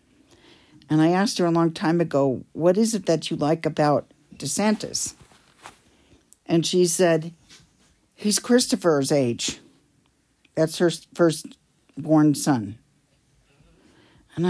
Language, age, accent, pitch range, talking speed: English, 50-69, American, 165-215 Hz, 110 wpm